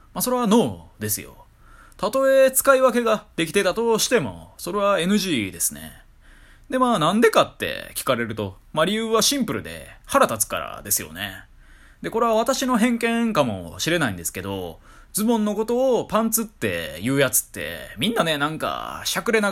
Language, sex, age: Japanese, male, 20-39